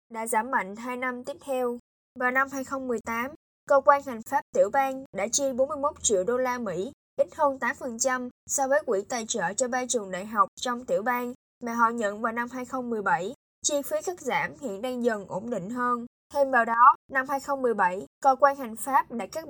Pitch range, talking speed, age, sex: 235-275 Hz, 205 wpm, 10-29, female